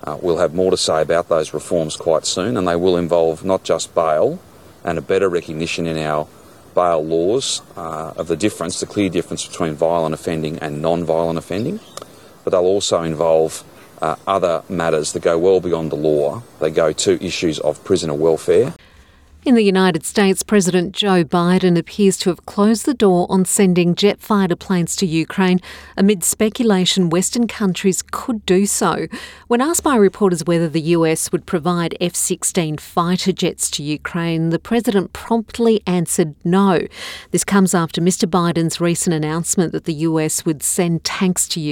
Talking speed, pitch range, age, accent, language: 170 wpm, 155-195 Hz, 40-59, Australian, English